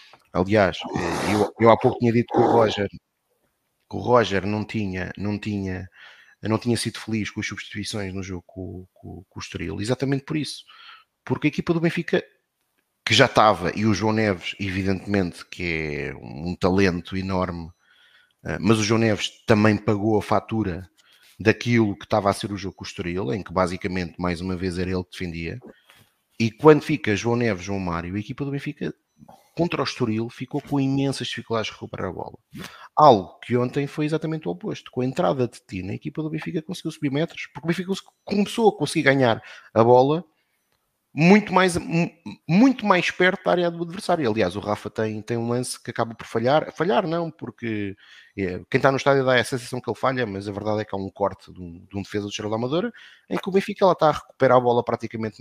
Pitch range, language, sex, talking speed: 100-140 Hz, Portuguese, male, 205 wpm